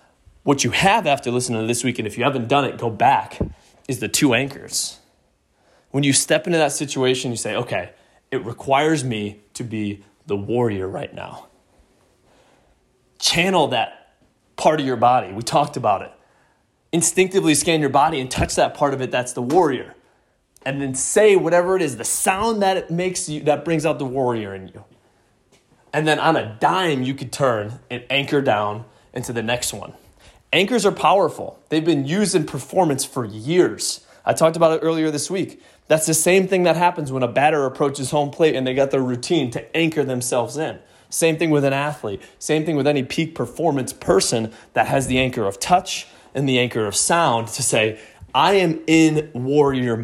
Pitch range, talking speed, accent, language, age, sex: 120-155 Hz, 195 wpm, American, English, 20-39, male